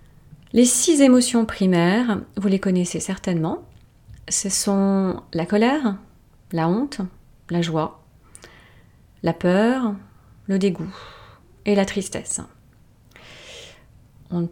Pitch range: 175-225 Hz